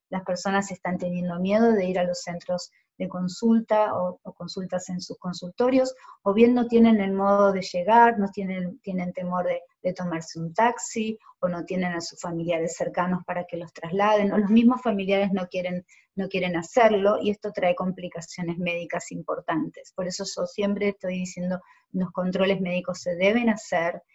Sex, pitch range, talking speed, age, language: female, 180-210 Hz, 185 wpm, 20-39, Spanish